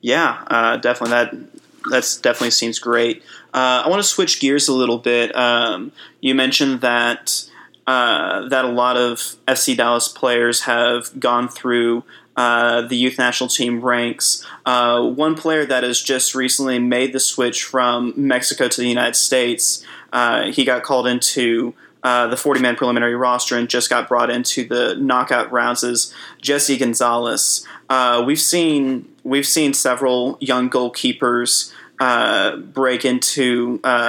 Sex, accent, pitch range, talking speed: male, American, 120-135 Hz, 150 wpm